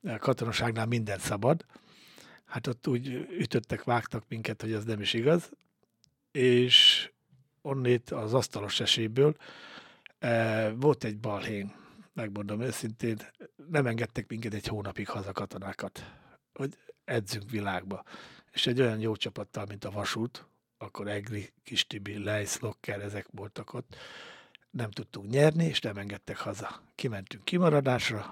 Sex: male